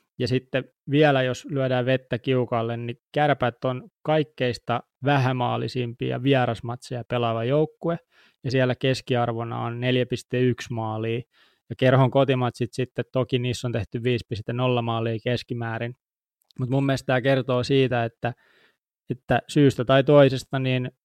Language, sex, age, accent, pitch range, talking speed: Finnish, male, 20-39, native, 120-130 Hz, 125 wpm